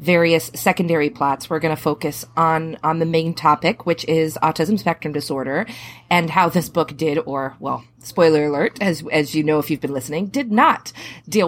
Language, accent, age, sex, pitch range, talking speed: English, American, 30-49, female, 155-185 Hz, 195 wpm